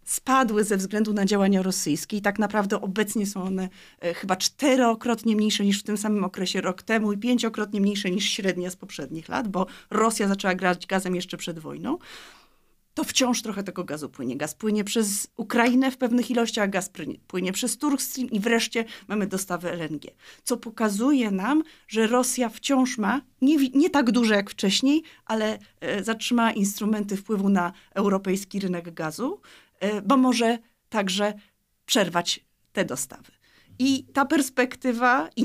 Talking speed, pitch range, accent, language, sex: 160 wpm, 190-235 Hz, native, Polish, female